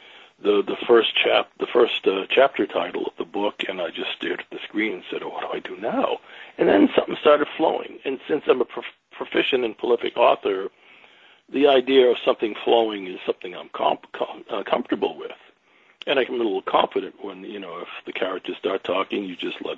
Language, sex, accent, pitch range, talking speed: English, male, American, 300-415 Hz, 210 wpm